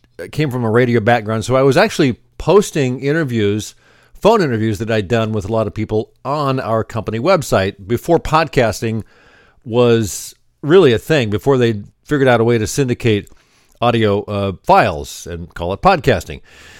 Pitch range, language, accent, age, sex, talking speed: 105-135 Hz, English, American, 50-69, male, 165 wpm